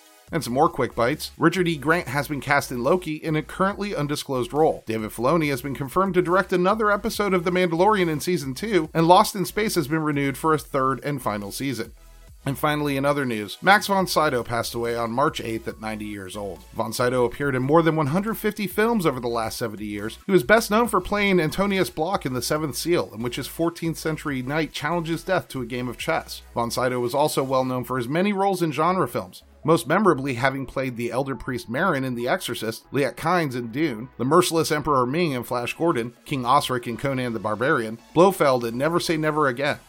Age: 30-49